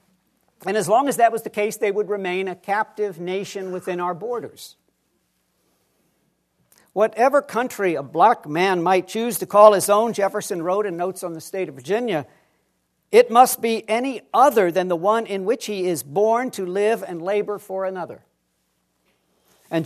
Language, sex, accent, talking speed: English, male, American, 170 wpm